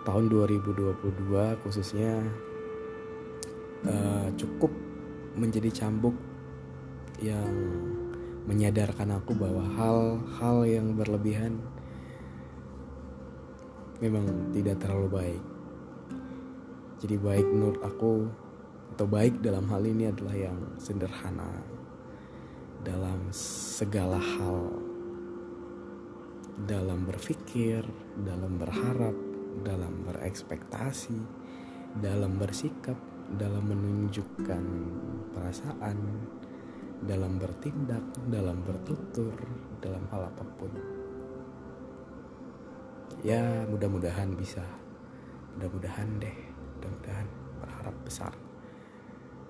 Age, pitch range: 20-39, 85-115 Hz